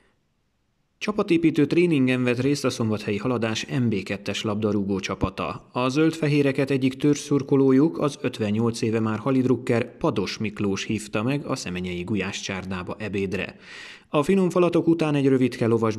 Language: Hungarian